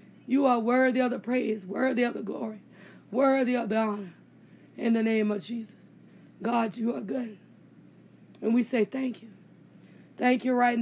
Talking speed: 170 wpm